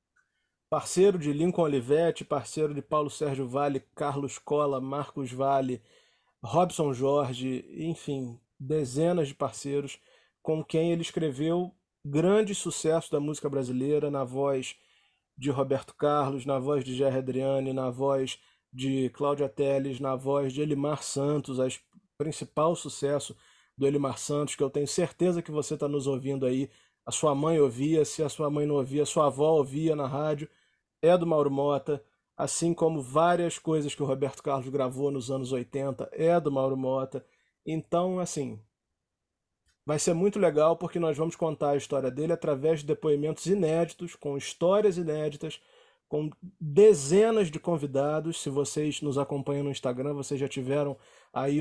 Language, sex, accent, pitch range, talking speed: Portuguese, male, Brazilian, 135-160 Hz, 155 wpm